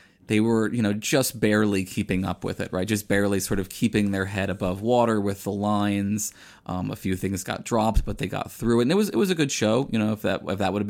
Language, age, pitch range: English, 20-39, 95-110 Hz